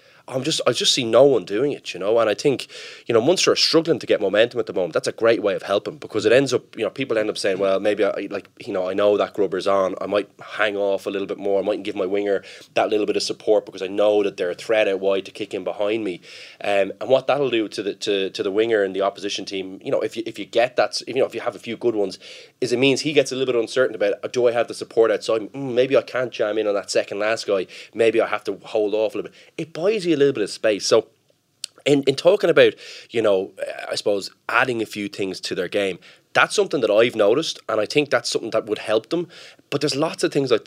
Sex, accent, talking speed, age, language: male, Irish, 290 wpm, 20-39, English